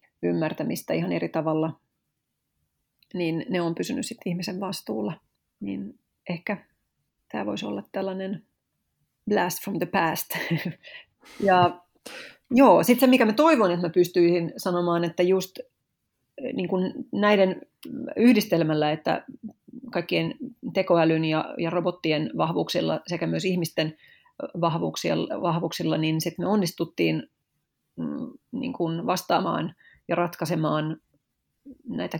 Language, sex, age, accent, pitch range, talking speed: Finnish, female, 30-49, native, 160-200 Hz, 110 wpm